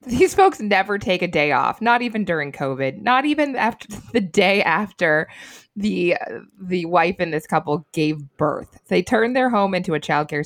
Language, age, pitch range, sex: English, 20-39, 155-210 Hz, female